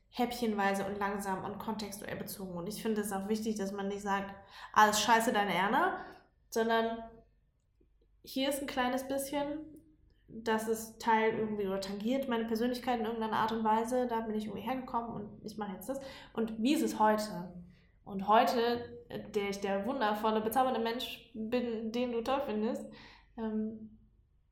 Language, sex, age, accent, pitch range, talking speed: German, female, 10-29, German, 200-235 Hz, 165 wpm